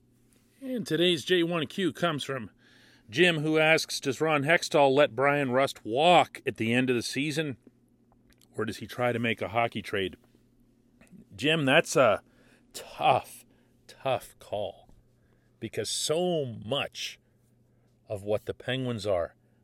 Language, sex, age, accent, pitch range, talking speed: English, male, 40-59, American, 115-140 Hz, 135 wpm